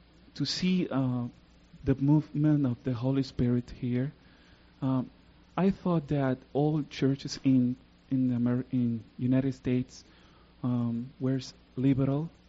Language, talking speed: English, 115 wpm